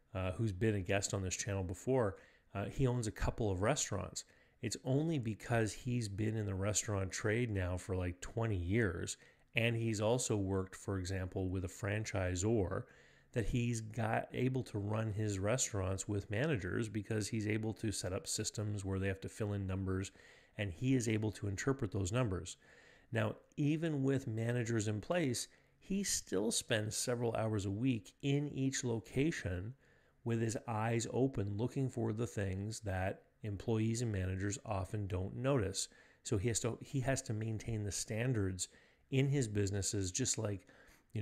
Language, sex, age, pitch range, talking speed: English, male, 30-49, 95-120 Hz, 170 wpm